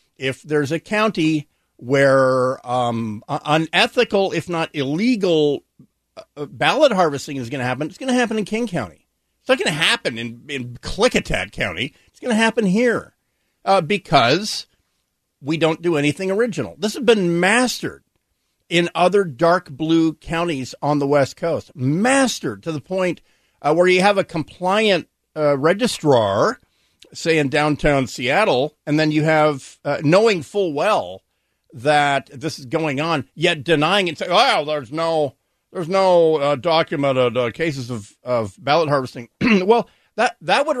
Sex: male